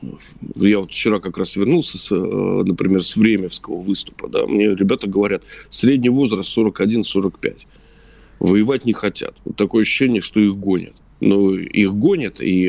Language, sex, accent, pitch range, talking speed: Russian, male, native, 95-110 Hz, 145 wpm